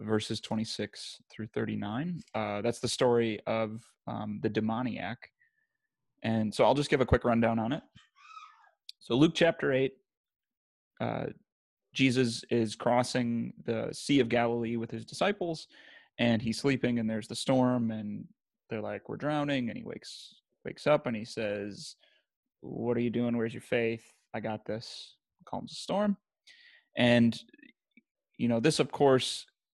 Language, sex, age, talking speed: English, male, 20-39, 155 wpm